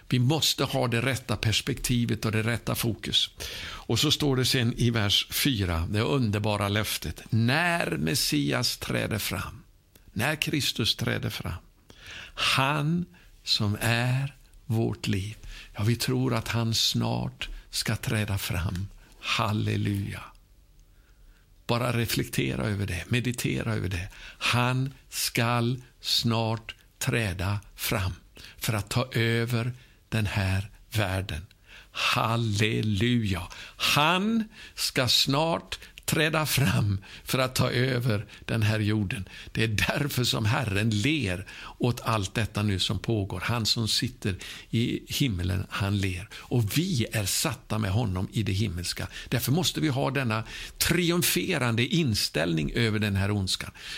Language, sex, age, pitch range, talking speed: Swedish, male, 60-79, 100-125 Hz, 130 wpm